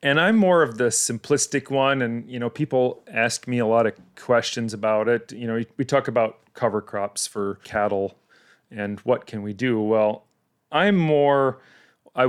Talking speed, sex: 180 wpm, male